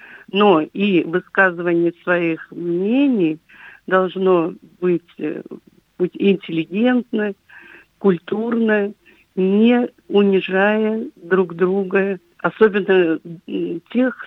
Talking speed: 65 wpm